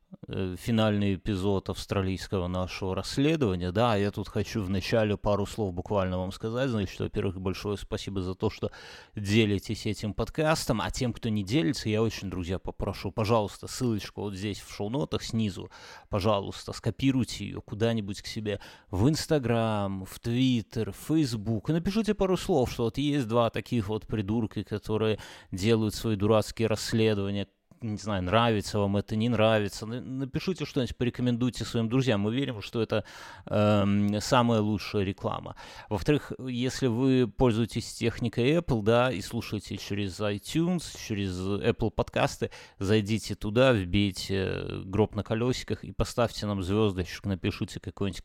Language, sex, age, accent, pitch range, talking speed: Russian, male, 30-49, native, 100-120 Hz, 145 wpm